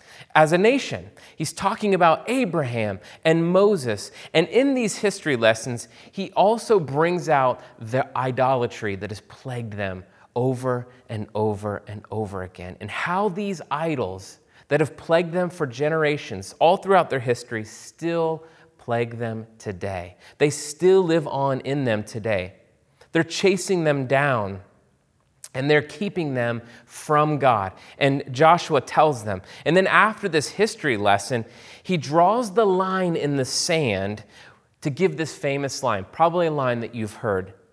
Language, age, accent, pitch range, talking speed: English, 30-49, American, 110-160 Hz, 150 wpm